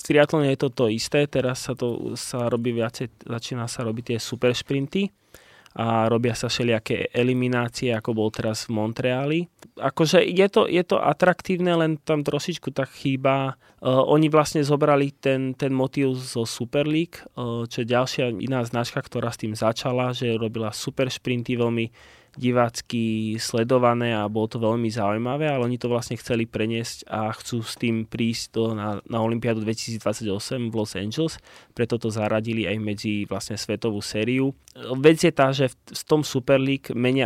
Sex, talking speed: male, 170 wpm